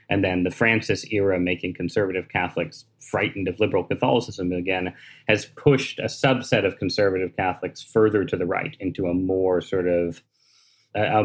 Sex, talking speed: male, 160 wpm